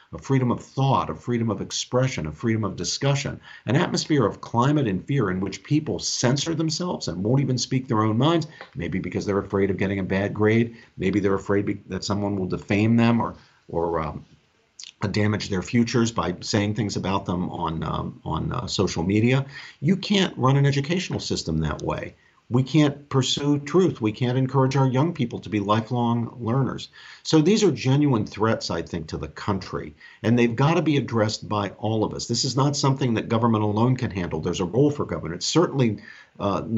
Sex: male